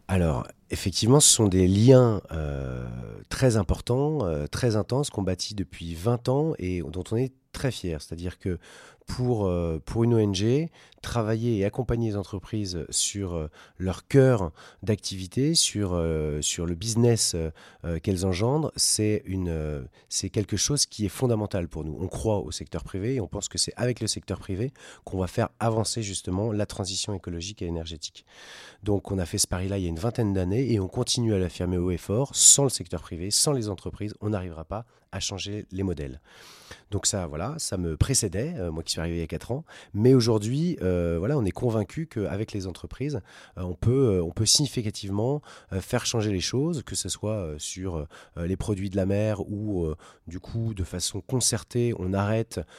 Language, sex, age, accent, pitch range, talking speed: French, male, 40-59, French, 90-115 Hz, 190 wpm